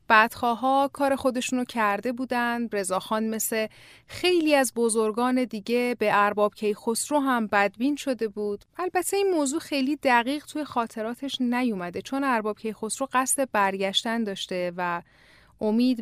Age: 30-49